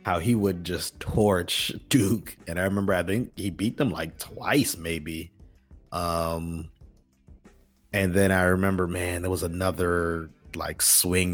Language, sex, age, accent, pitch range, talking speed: English, male, 30-49, American, 85-100 Hz, 150 wpm